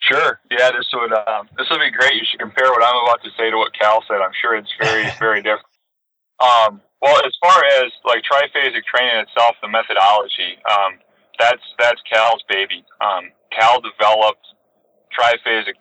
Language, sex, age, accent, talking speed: English, male, 30-49, American, 180 wpm